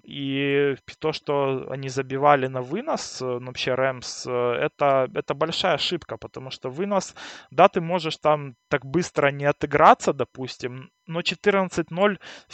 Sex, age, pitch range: male, 20-39, 135-165 Hz